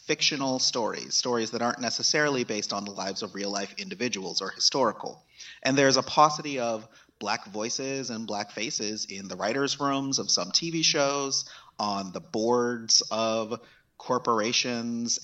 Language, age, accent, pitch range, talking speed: English, 30-49, American, 105-130 Hz, 150 wpm